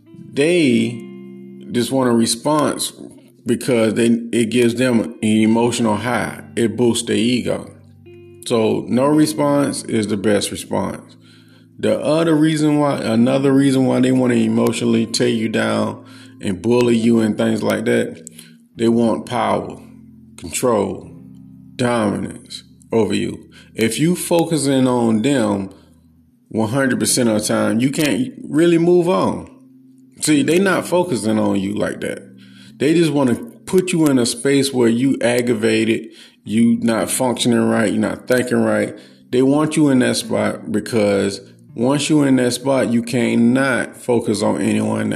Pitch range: 110-130 Hz